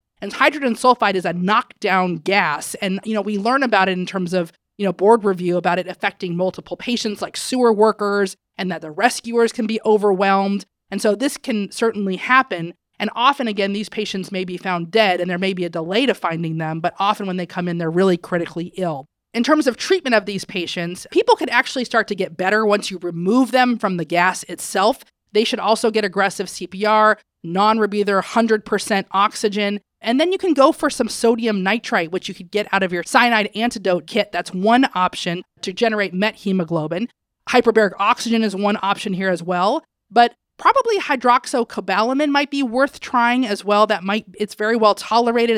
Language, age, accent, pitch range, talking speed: English, 30-49, American, 185-230 Hz, 195 wpm